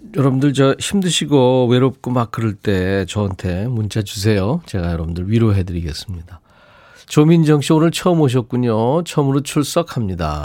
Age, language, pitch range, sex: 40-59, Korean, 100-140 Hz, male